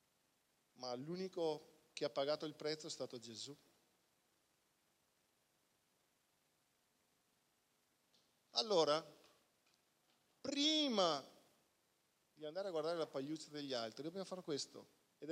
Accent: native